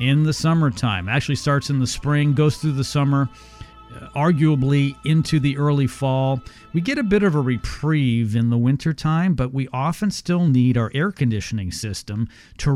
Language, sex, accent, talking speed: English, male, American, 175 wpm